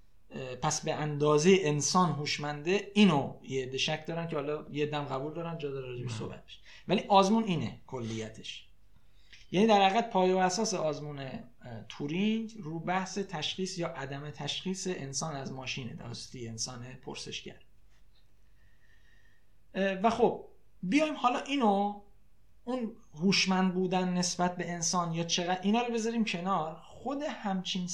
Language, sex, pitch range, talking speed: Persian, male, 125-190 Hz, 135 wpm